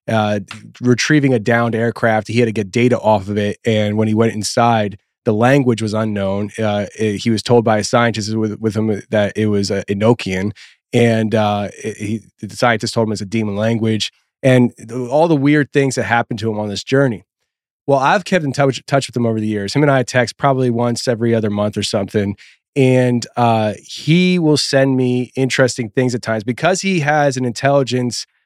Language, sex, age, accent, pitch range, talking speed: English, male, 30-49, American, 110-135 Hz, 200 wpm